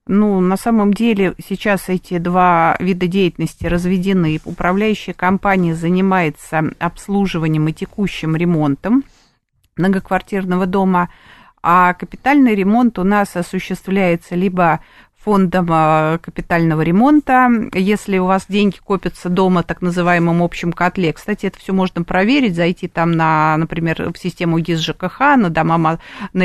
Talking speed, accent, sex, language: 125 wpm, native, female, Russian